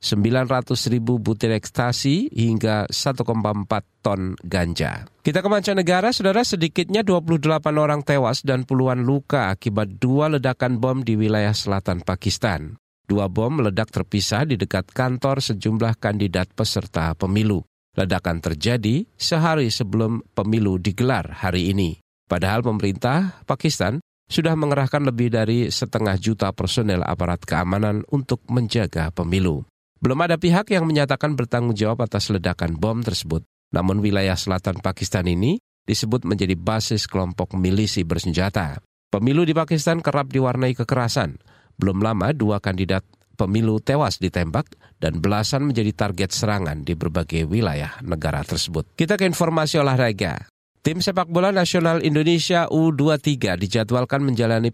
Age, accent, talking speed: 50-69, native, 130 wpm